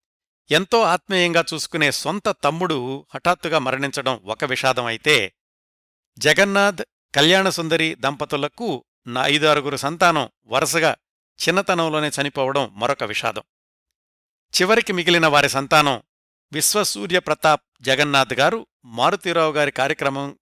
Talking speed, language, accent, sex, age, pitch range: 90 wpm, Telugu, native, male, 60-79, 130-160 Hz